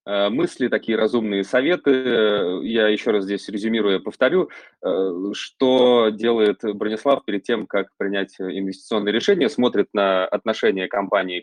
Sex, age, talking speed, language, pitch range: male, 20-39, 125 wpm, Russian, 100-120 Hz